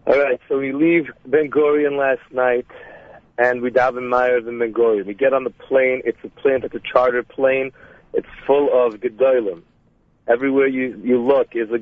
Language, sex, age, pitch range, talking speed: English, male, 40-59, 120-135 Hz, 190 wpm